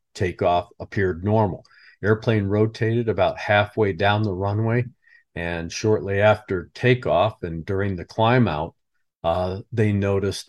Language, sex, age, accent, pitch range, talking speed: English, male, 50-69, American, 90-110 Hz, 125 wpm